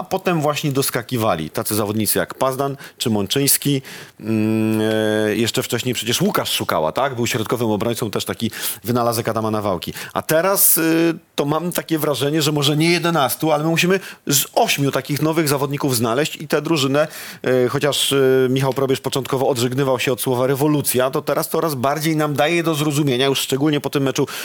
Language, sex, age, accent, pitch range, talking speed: Polish, male, 40-59, native, 125-150 Hz, 175 wpm